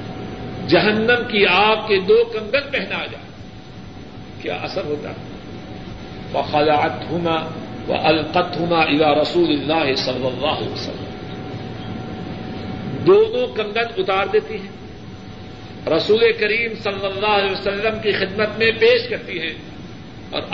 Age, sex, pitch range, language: 50-69, male, 140-215 Hz, Urdu